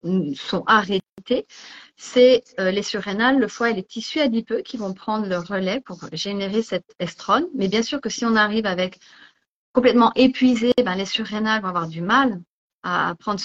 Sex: female